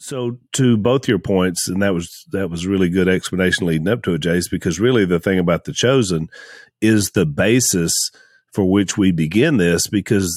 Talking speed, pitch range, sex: 195 wpm, 90-115 Hz, male